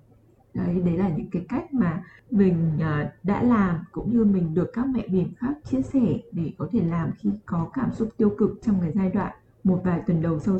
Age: 20-39